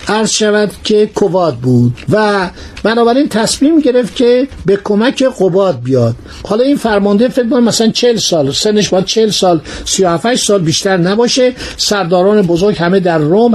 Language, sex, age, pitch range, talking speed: Persian, male, 60-79, 185-240 Hz, 155 wpm